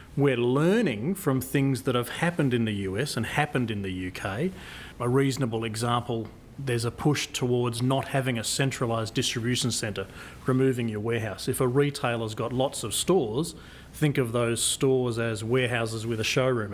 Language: English